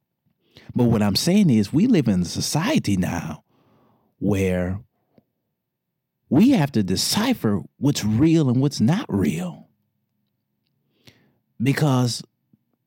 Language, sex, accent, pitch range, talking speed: English, male, American, 95-140 Hz, 105 wpm